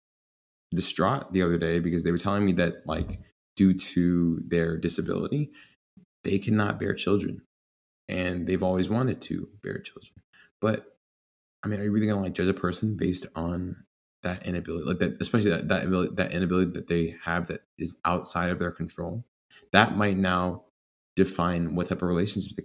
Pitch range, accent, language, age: 85-95 Hz, American, English, 20-39